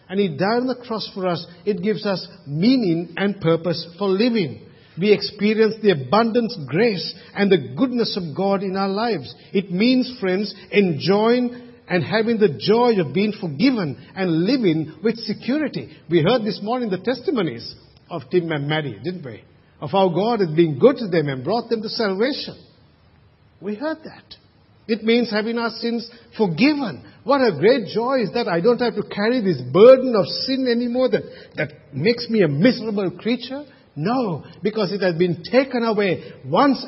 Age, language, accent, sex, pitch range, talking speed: 50-69, English, Indian, male, 175-235 Hz, 175 wpm